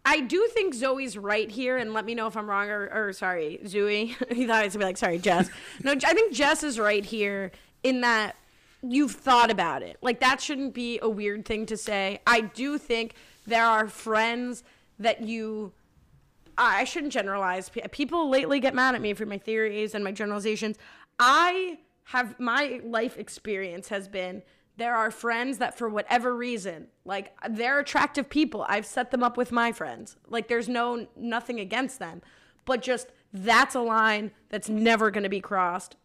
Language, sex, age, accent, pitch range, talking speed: English, female, 20-39, American, 210-255 Hz, 190 wpm